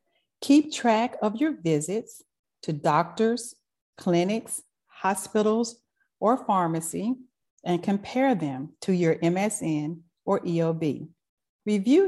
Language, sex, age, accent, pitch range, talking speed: English, female, 40-59, American, 165-235 Hz, 100 wpm